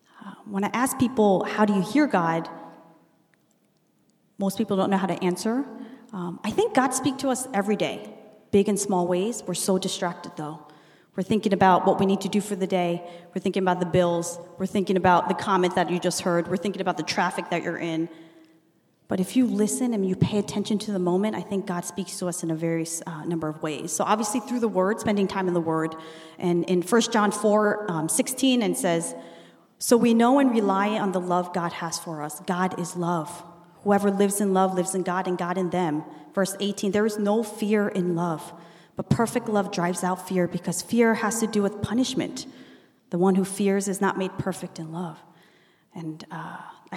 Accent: American